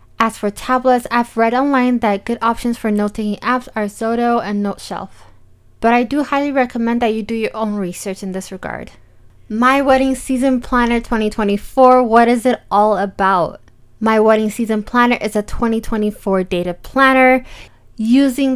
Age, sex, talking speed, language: 20-39, female, 160 wpm, English